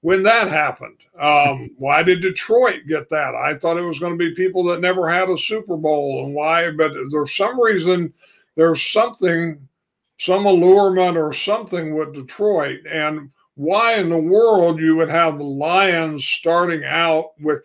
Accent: American